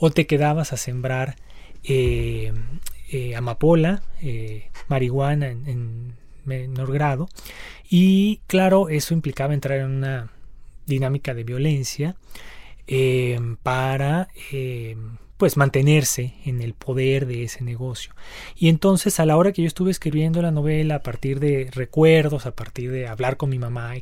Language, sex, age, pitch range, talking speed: Spanish, male, 30-49, 125-155 Hz, 145 wpm